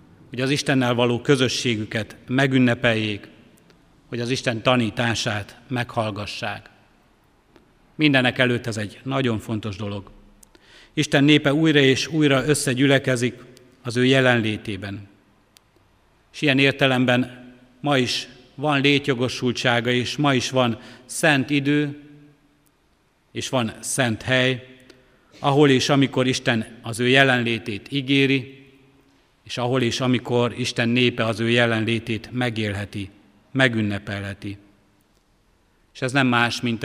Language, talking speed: Hungarian, 110 wpm